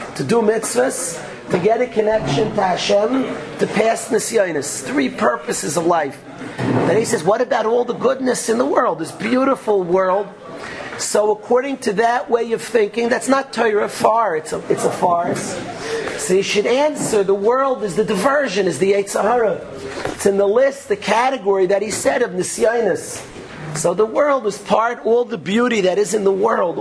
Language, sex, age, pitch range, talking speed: English, male, 40-59, 195-235 Hz, 180 wpm